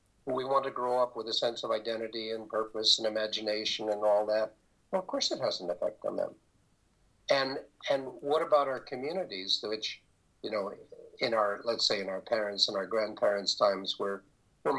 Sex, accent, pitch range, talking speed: male, American, 100-140 Hz, 195 wpm